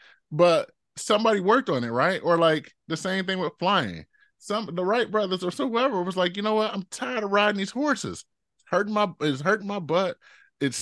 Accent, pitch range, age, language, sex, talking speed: American, 150-200 Hz, 20-39, English, male, 210 wpm